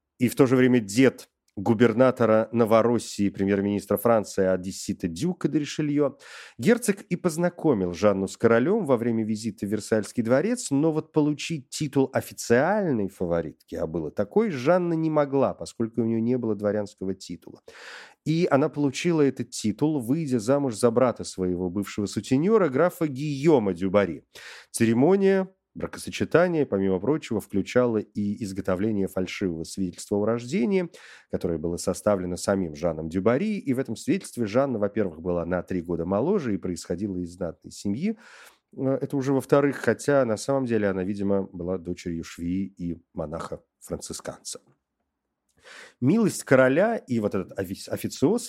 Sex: male